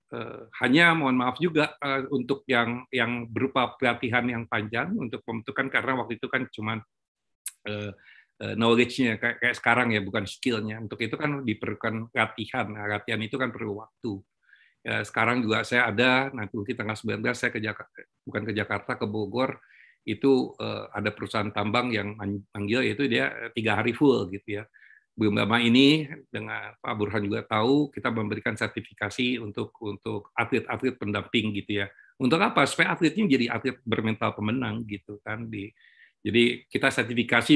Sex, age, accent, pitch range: male, 50-69, native, 105-130 Hz